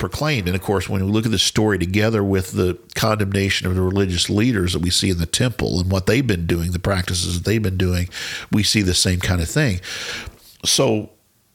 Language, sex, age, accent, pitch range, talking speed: English, male, 50-69, American, 90-110 Hz, 225 wpm